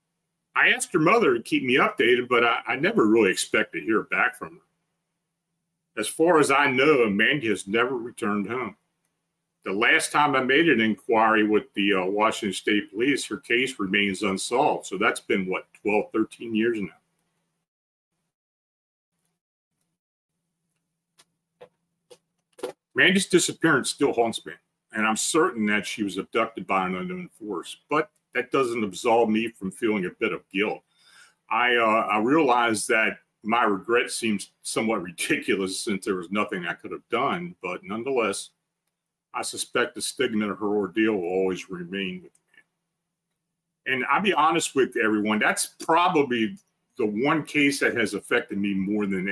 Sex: male